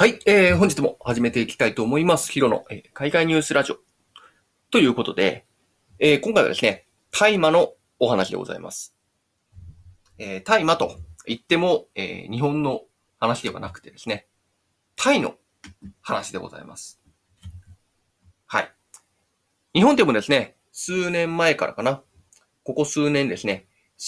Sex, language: male, Japanese